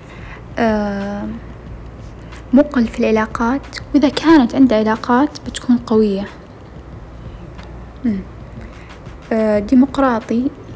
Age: 10-29